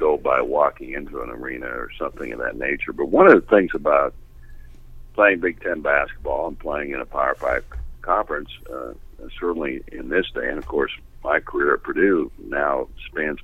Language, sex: English, male